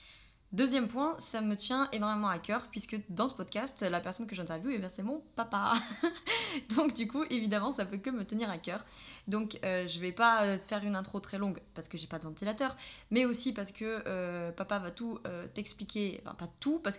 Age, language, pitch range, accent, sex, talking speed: 20-39, French, 185-215 Hz, French, female, 220 wpm